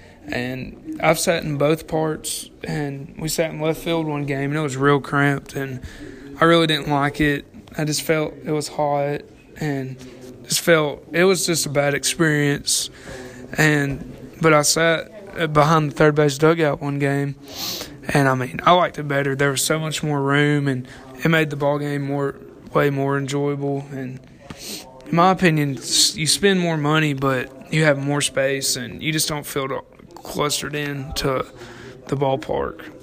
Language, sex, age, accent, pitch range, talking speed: English, male, 20-39, American, 140-155 Hz, 175 wpm